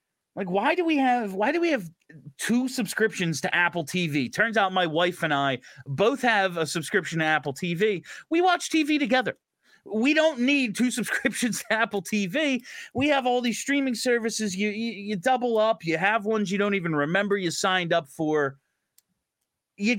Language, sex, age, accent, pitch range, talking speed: English, male, 30-49, American, 155-220 Hz, 185 wpm